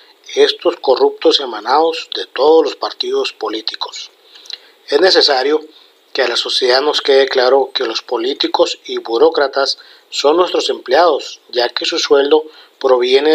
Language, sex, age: Spanish, male, 40-59